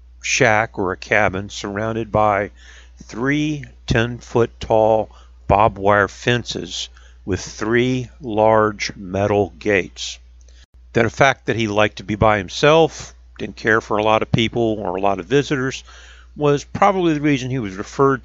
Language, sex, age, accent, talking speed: English, male, 50-69, American, 150 wpm